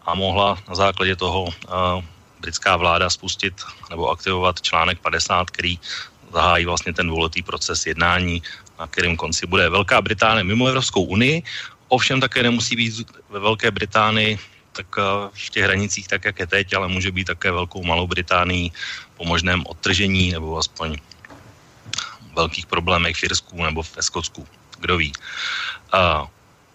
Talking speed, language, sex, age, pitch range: 150 wpm, Slovak, male, 30-49, 90-105 Hz